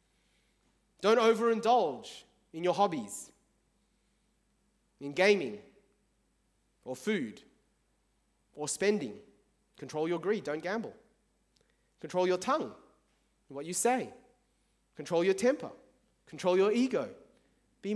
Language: English